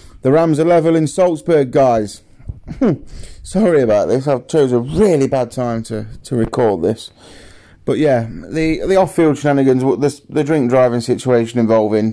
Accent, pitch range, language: British, 110-130 Hz, English